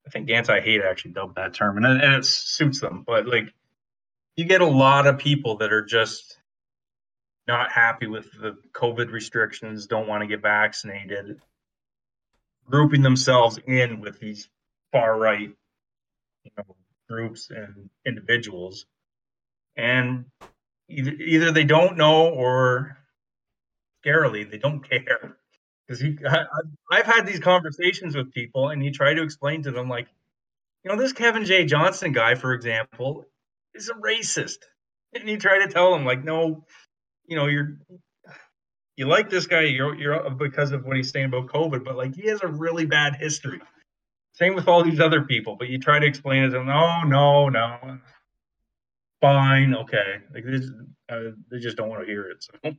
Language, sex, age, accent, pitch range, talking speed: English, male, 30-49, American, 120-155 Hz, 165 wpm